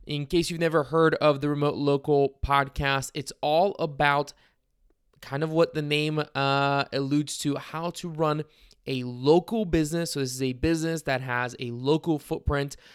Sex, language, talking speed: male, English, 170 wpm